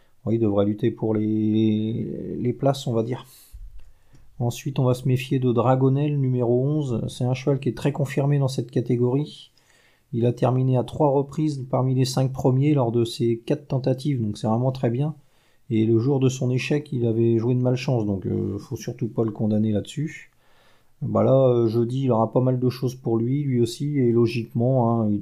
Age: 40-59